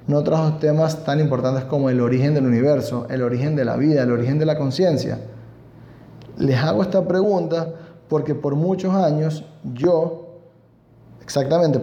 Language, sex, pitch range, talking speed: Spanish, male, 125-165 Hz, 150 wpm